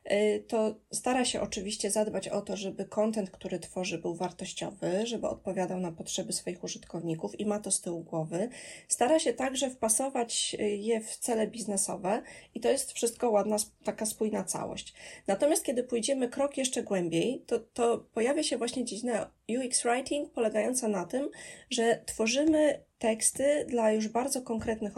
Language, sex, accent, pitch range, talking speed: Polish, female, native, 195-245 Hz, 155 wpm